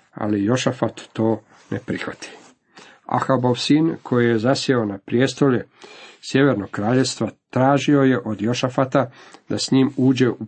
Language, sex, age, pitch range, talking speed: Croatian, male, 50-69, 110-130 Hz, 130 wpm